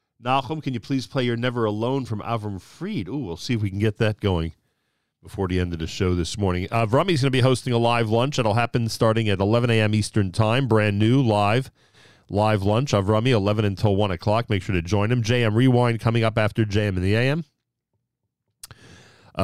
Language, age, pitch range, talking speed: English, 40-59, 100-125 Hz, 215 wpm